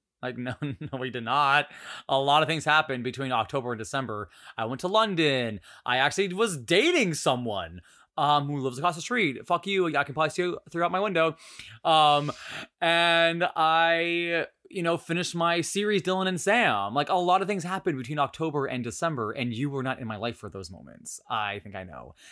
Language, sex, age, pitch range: English, male, 20-39, 120-165 Hz